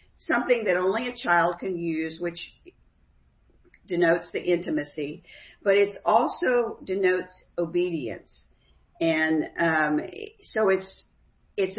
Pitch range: 150-185 Hz